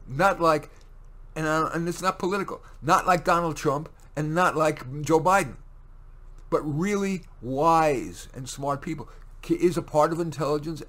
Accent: American